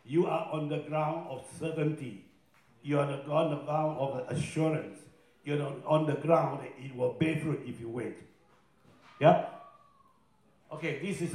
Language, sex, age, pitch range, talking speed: English, male, 60-79, 135-175 Hz, 160 wpm